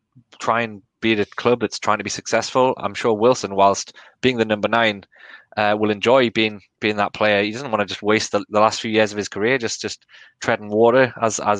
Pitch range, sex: 105-125 Hz, male